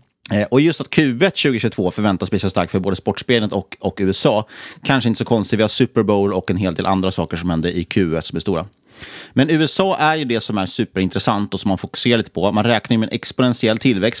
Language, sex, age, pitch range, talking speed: Swedish, male, 30-49, 95-125 Hz, 235 wpm